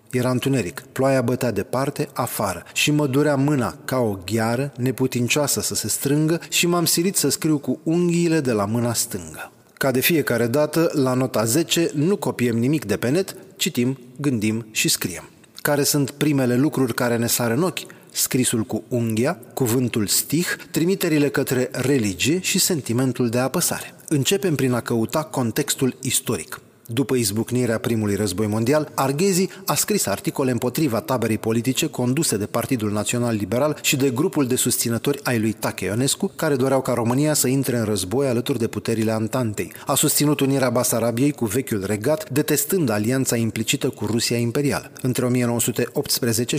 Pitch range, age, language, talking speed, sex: 120-150 Hz, 30-49, Romanian, 160 wpm, male